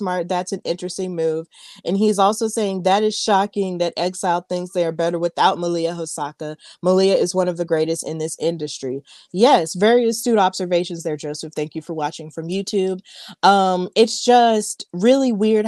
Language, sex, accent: English, female, American